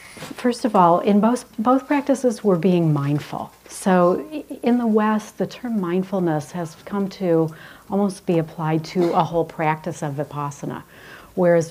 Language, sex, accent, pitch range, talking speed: English, female, American, 150-190 Hz, 155 wpm